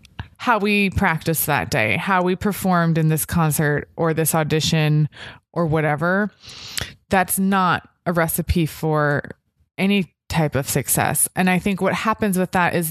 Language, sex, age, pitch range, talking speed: English, female, 20-39, 155-195 Hz, 155 wpm